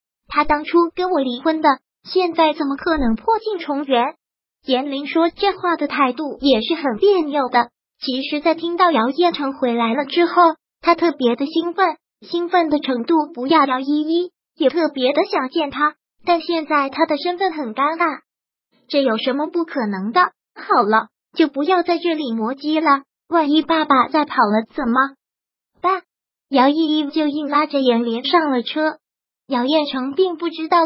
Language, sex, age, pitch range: Chinese, male, 20-39, 275-335 Hz